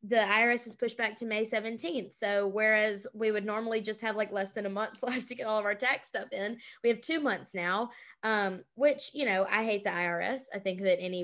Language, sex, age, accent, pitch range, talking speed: English, female, 20-39, American, 200-245 Hz, 245 wpm